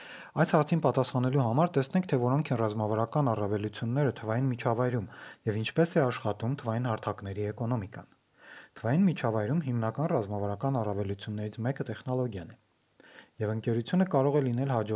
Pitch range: 110-140 Hz